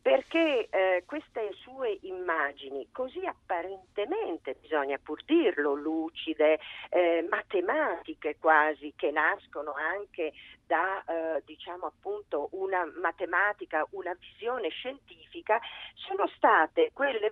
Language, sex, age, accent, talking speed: Italian, female, 40-59, native, 100 wpm